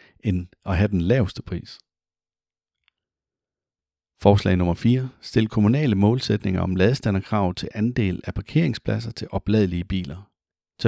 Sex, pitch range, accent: male, 95-115 Hz, native